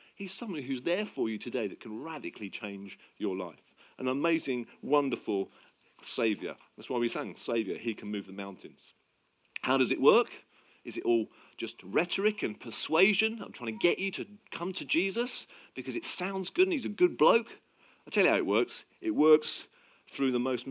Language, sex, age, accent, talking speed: English, male, 40-59, British, 195 wpm